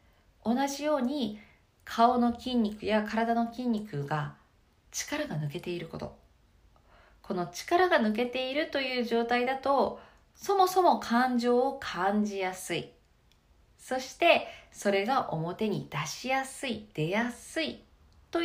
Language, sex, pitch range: Japanese, female, 200-285 Hz